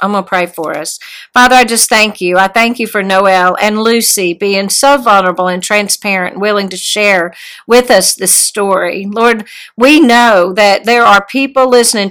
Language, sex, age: English, female, 50-69